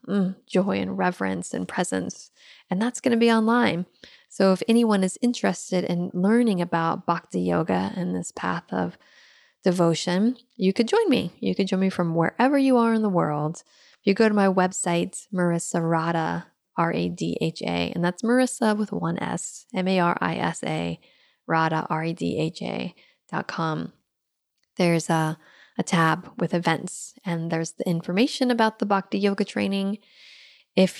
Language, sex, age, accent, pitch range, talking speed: English, female, 20-39, American, 170-210 Hz, 145 wpm